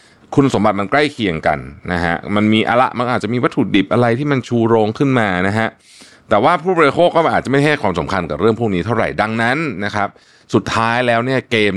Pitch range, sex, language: 85-115 Hz, male, Thai